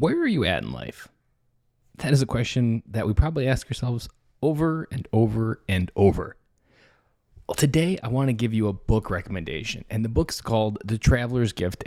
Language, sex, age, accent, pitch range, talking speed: English, male, 20-39, American, 100-125 Hz, 185 wpm